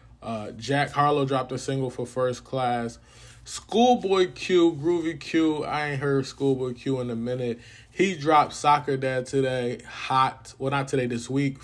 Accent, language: American, English